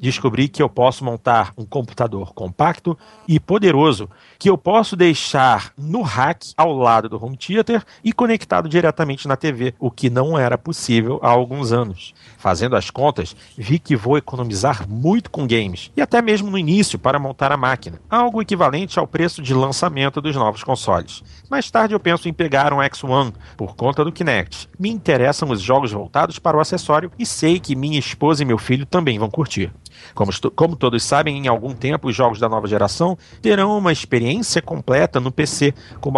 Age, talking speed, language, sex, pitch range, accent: 40-59, 185 wpm, Portuguese, male, 115-160 Hz, Brazilian